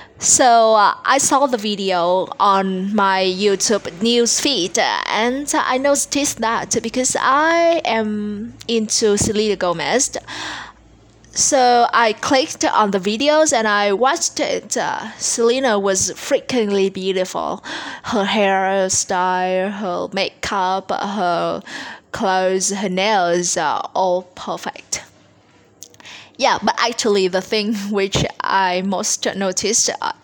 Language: Vietnamese